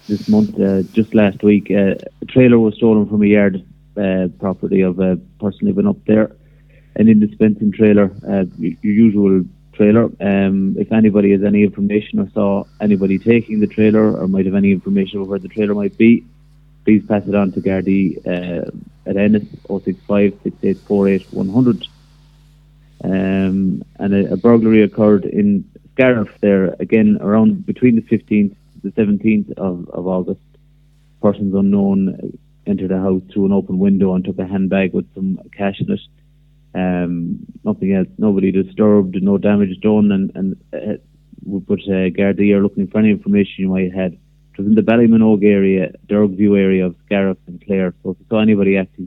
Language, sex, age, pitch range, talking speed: English, male, 30-49, 95-115 Hz, 175 wpm